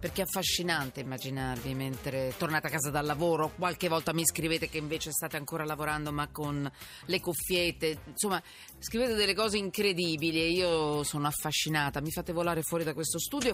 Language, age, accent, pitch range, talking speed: Italian, 40-59, native, 155-210 Hz, 175 wpm